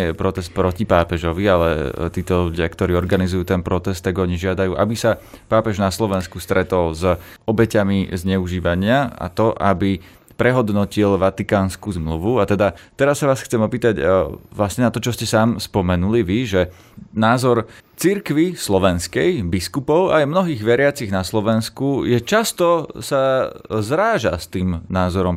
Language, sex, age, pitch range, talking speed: Slovak, male, 30-49, 90-115 Hz, 140 wpm